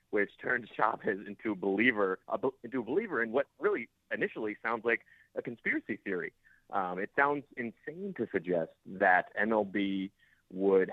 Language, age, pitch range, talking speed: English, 30-49, 95-120 Hz, 135 wpm